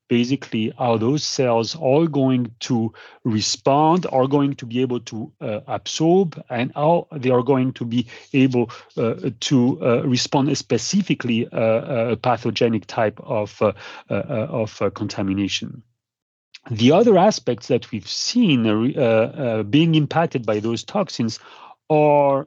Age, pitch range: 40-59, 110-145 Hz